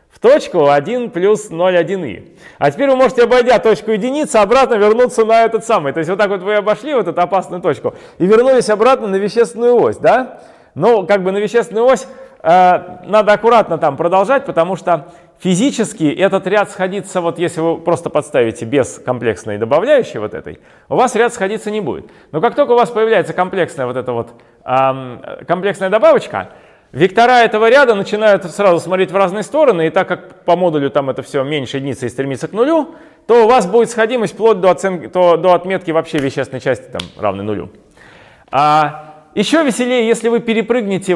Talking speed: 185 wpm